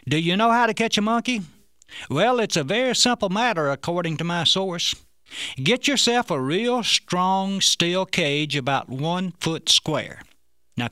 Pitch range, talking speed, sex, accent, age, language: 145-200 Hz, 165 wpm, male, American, 60-79, English